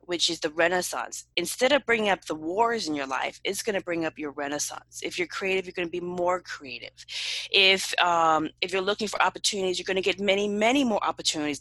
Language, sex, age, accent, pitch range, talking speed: English, female, 20-39, American, 160-210 Hz, 225 wpm